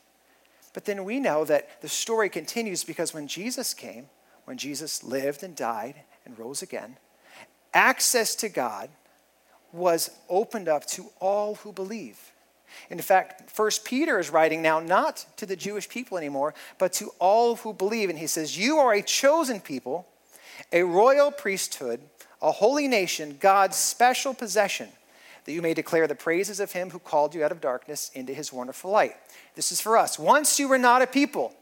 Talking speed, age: 175 wpm, 40-59